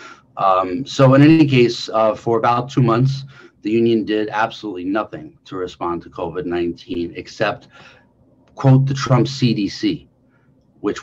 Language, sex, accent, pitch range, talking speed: English, male, American, 95-125 Hz, 135 wpm